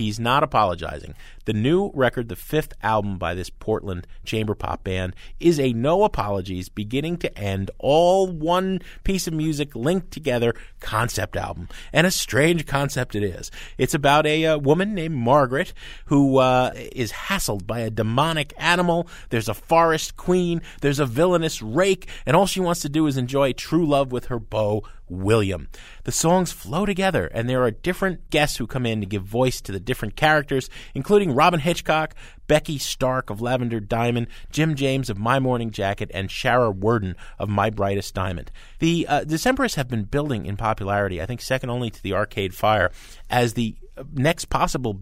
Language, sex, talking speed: English, male, 180 wpm